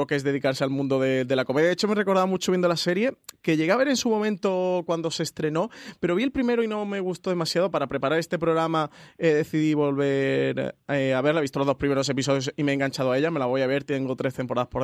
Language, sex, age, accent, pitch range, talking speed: Spanish, male, 20-39, Spanish, 135-160 Hz, 275 wpm